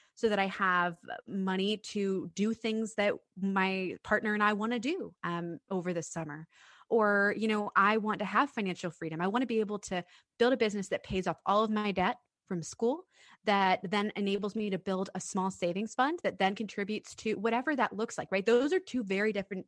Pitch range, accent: 180-230 Hz, American